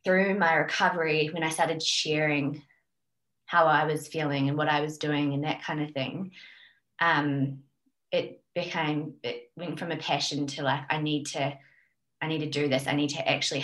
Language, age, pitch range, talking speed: English, 20-39, 140-165 Hz, 190 wpm